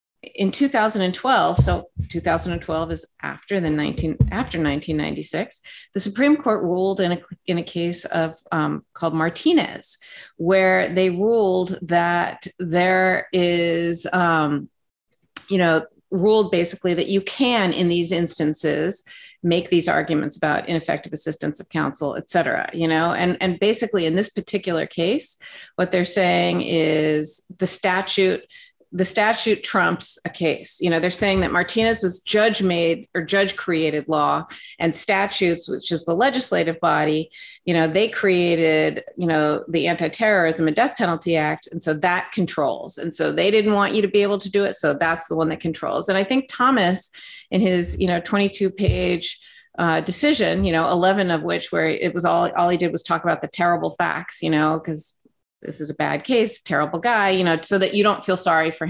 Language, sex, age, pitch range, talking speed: English, female, 40-59, 165-200 Hz, 175 wpm